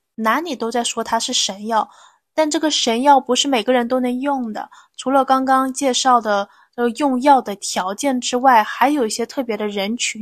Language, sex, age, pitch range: Chinese, female, 10-29, 210-270 Hz